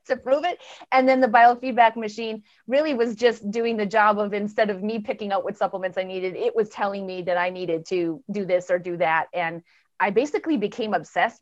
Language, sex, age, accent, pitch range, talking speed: English, female, 30-49, American, 185-240 Hz, 220 wpm